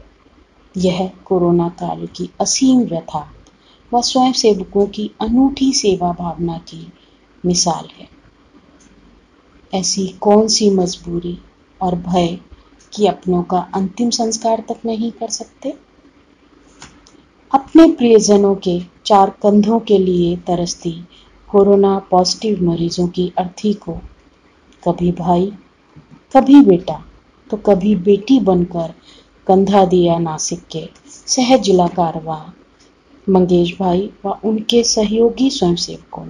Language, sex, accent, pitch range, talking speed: Hindi, female, native, 175-215 Hz, 105 wpm